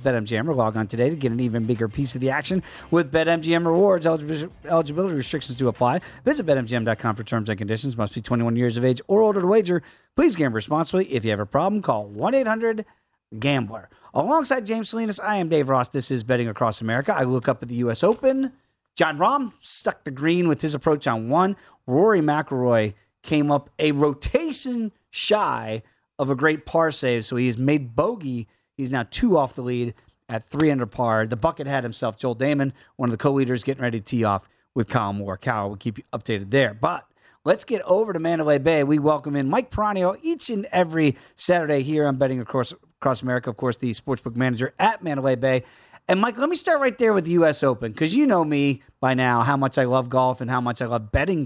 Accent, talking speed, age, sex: American, 215 wpm, 30-49, male